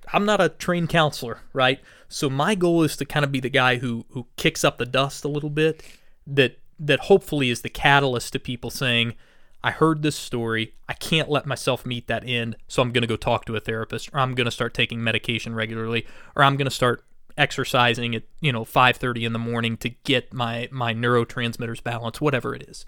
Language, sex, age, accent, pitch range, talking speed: English, male, 20-39, American, 115-140 Hz, 220 wpm